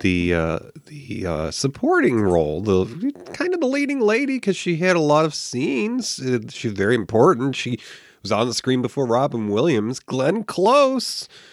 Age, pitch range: 30-49, 110-165 Hz